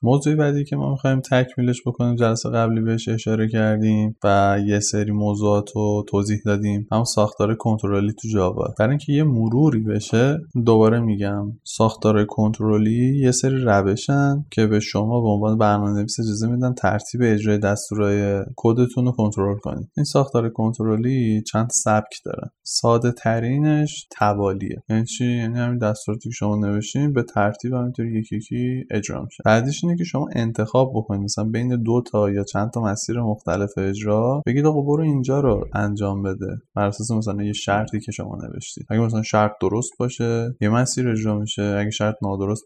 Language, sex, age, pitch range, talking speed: Persian, male, 20-39, 105-125 Hz, 160 wpm